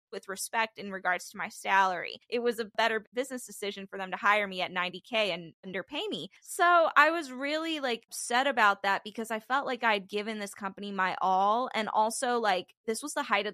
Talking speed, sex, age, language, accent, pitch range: 215 wpm, female, 10-29, English, American, 185-230 Hz